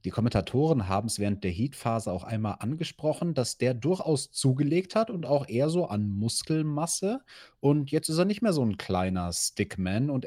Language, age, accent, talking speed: German, 30-49, German, 185 wpm